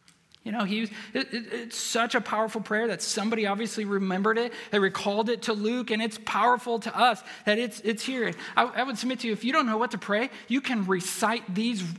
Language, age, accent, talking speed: English, 40-59, American, 235 wpm